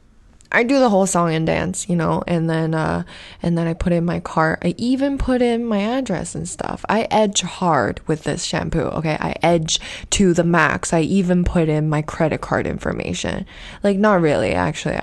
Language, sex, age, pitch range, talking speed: English, female, 20-39, 150-180 Hz, 205 wpm